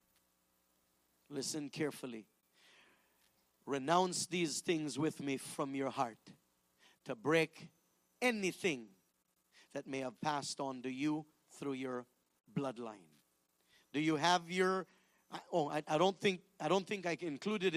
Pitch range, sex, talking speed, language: 150-240 Hz, male, 125 wpm, English